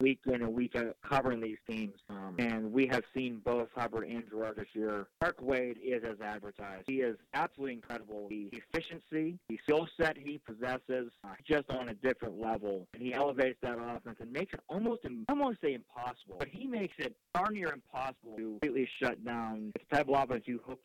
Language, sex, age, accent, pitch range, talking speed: English, male, 40-59, American, 110-135 Hz, 200 wpm